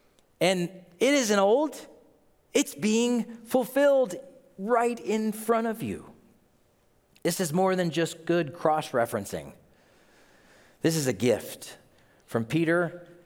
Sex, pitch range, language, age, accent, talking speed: male, 125-190 Hz, English, 40-59, American, 115 wpm